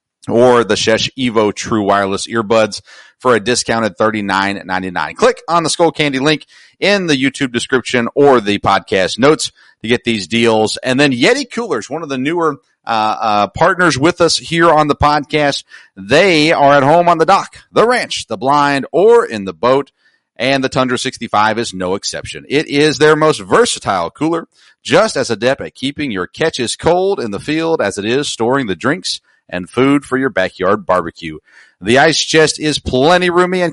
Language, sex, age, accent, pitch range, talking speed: English, male, 40-59, American, 115-165 Hz, 185 wpm